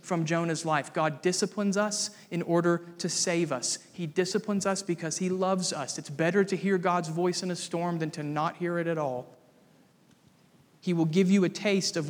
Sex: male